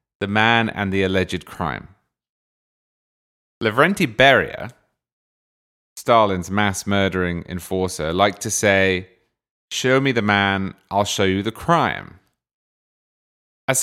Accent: British